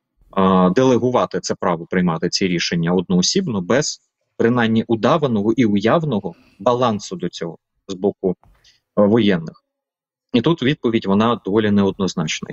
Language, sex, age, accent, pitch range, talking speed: Ukrainian, male, 20-39, native, 95-135 Hz, 115 wpm